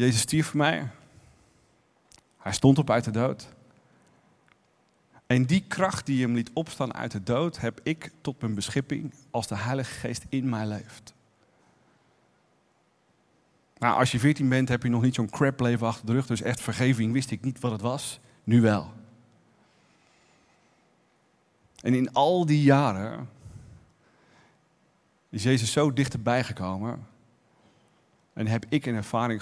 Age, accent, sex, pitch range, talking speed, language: 40-59, Dutch, male, 110-135 Hz, 150 wpm, Dutch